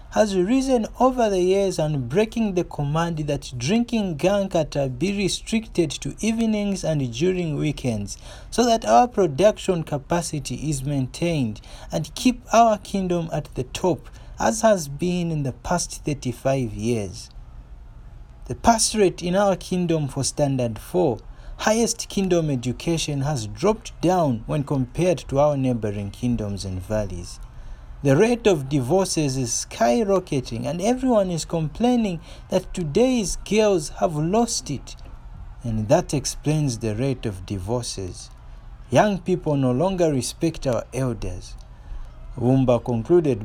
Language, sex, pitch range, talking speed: English, male, 120-185 Hz, 135 wpm